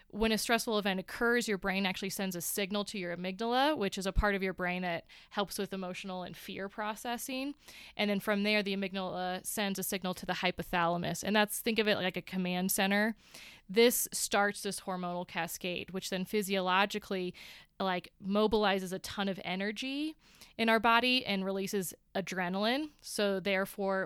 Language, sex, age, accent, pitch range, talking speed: English, female, 20-39, American, 180-210 Hz, 180 wpm